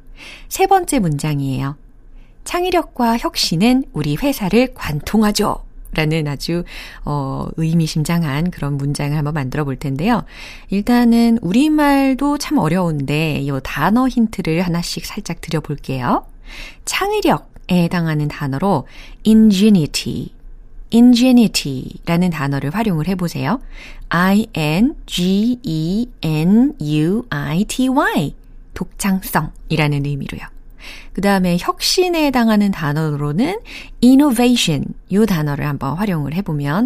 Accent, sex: native, female